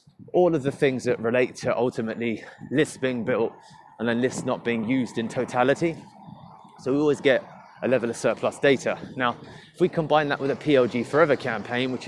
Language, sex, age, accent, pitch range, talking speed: English, male, 20-39, British, 115-140 Hz, 195 wpm